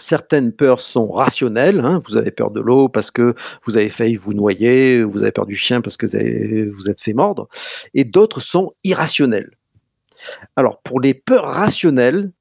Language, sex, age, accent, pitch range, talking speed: French, male, 50-69, French, 120-185 Hz, 190 wpm